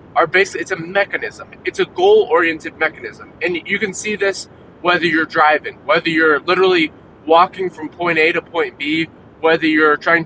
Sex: male